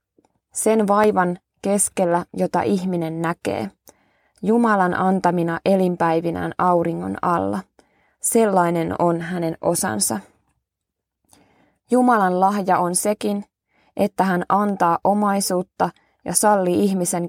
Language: Finnish